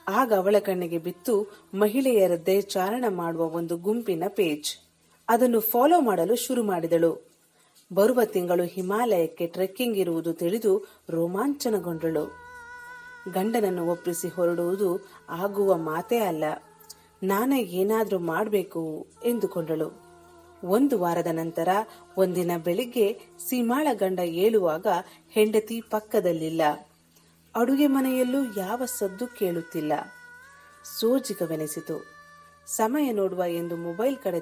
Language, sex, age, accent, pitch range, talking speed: Kannada, female, 40-59, native, 170-235 Hz, 90 wpm